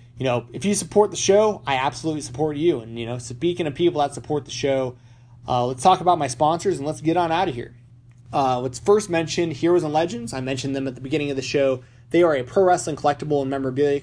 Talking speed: 250 wpm